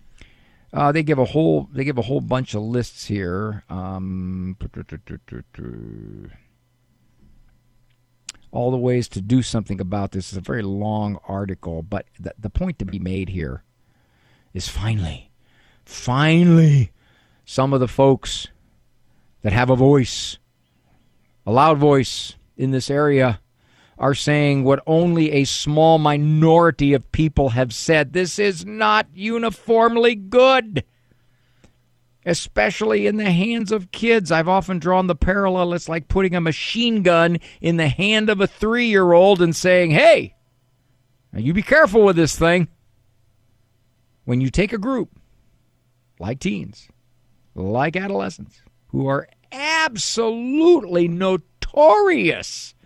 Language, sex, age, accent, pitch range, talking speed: English, male, 50-69, American, 110-175 Hz, 130 wpm